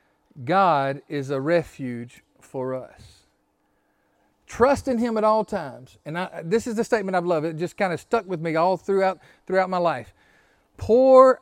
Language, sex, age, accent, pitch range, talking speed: English, male, 40-59, American, 175-265 Hz, 170 wpm